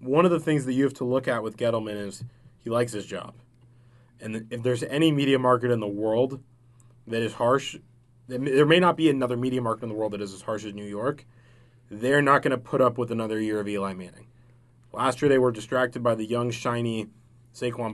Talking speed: 230 wpm